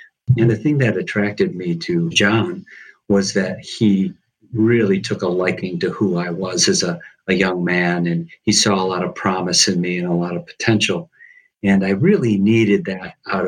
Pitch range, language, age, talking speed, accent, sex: 95-110 Hz, English, 50-69, 195 wpm, American, male